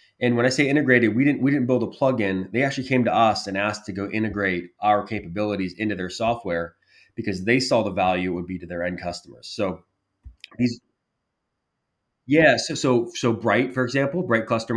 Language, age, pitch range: English, 20-39, 95-115 Hz